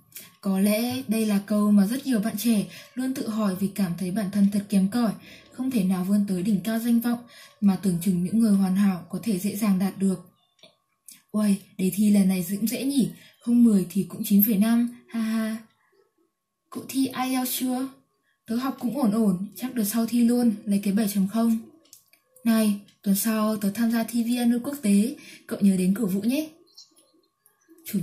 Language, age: Vietnamese, 20-39